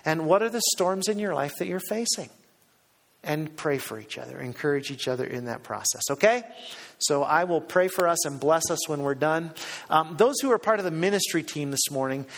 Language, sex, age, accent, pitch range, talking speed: English, male, 40-59, American, 145-180 Hz, 225 wpm